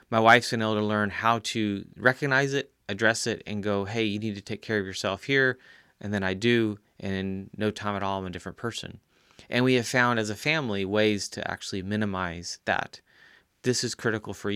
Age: 30-49